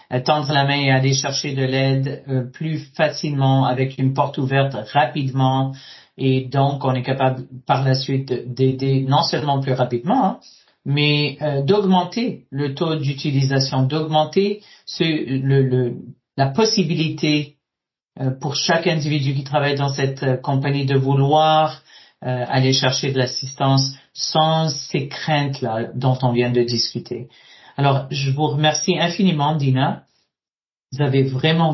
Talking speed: 145 wpm